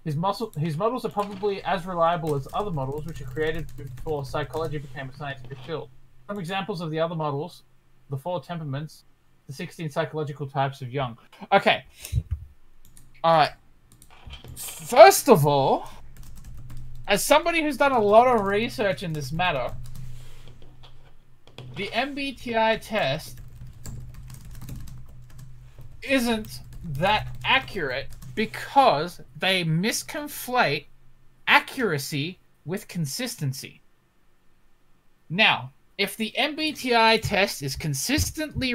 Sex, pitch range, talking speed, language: male, 125-205 Hz, 105 wpm, English